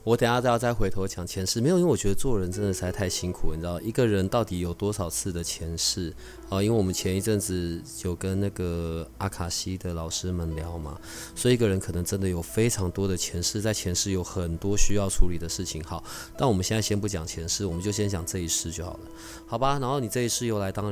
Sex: male